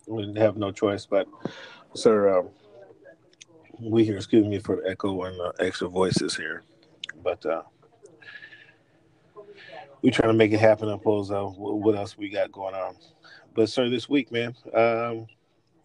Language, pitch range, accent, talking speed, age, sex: English, 110-170 Hz, American, 160 wpm, 30-49, male